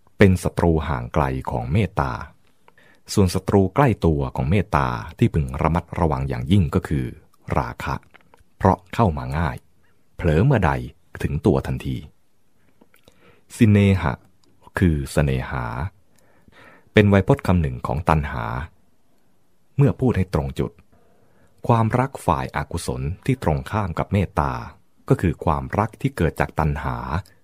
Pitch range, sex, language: 70-105 Hz, male, English